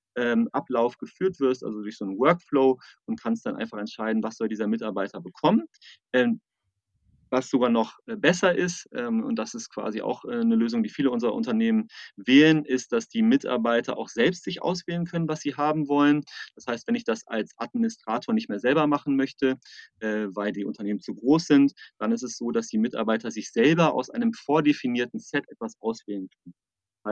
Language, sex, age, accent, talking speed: German, male, 30-49, German, 185 wpm